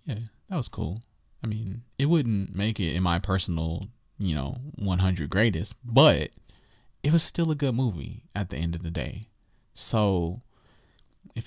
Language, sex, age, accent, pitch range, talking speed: English, male, 20-39, American, 95-125 Hz, 165 wpm